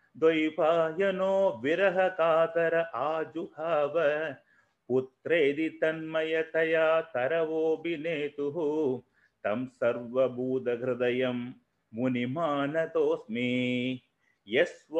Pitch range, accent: 130-165 Hz, native